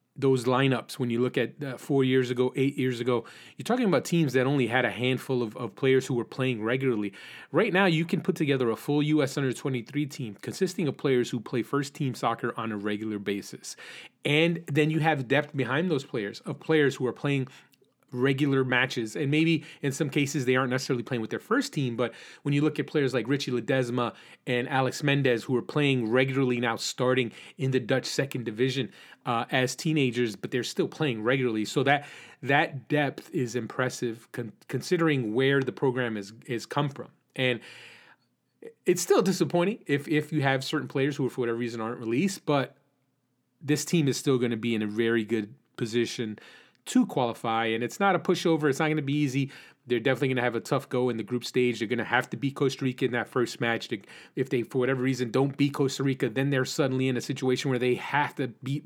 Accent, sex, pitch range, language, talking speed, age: American, male, 125-150 Hz, English, 220 wpm, 30-49